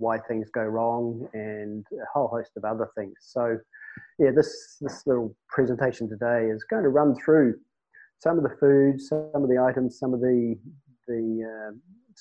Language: English